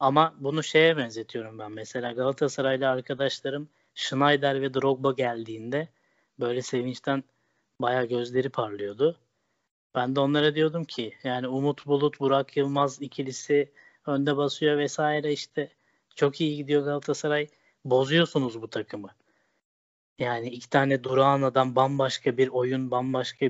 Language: Turkish